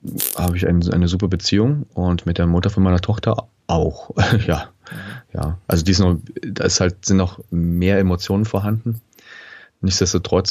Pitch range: 85-100 Hz